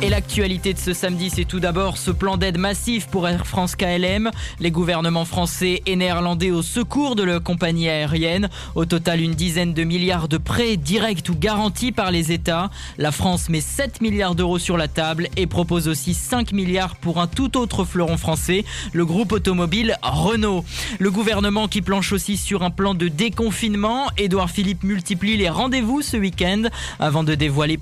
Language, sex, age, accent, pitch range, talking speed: French, male, 20-39, French, 165-200 Hz, 185 wpm